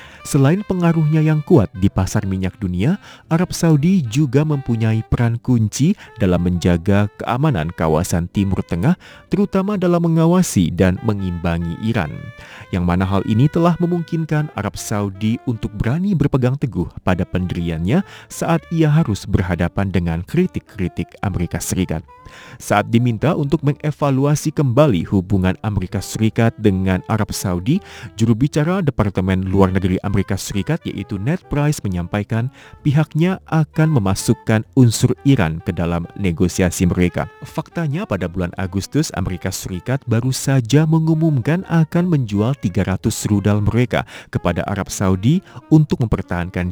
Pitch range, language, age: 95-150 Hz, Indonesian, 30-49